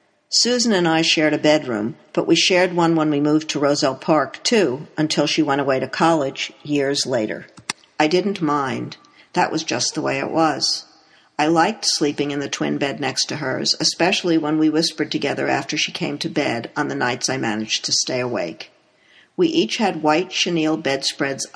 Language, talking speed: English, 190 wpm